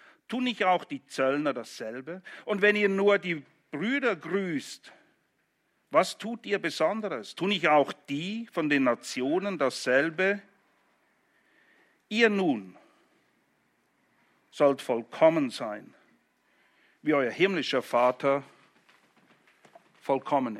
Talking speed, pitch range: 100 wpm, 145-210 Hz